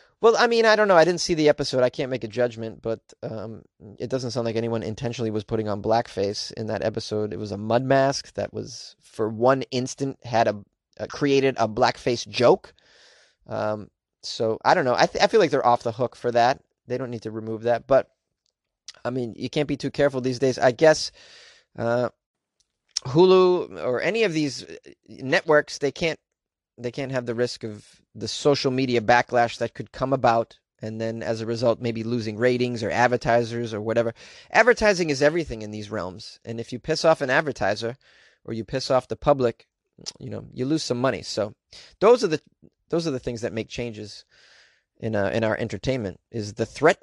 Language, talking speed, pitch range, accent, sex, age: English, 205 wpm, 115-135 Hz, American, male, 30-49